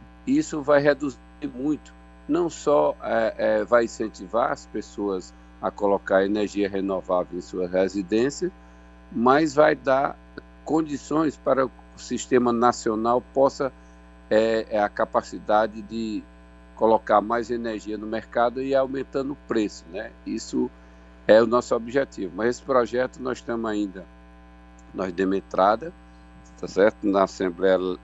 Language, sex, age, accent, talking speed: Portuguese, male, 50-69, Brazilian, 120 wpm